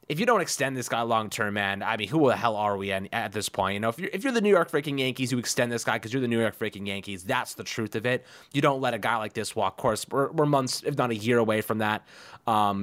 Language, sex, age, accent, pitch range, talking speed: English, male, 20-39, American, 105-135 Hz, 315 wpm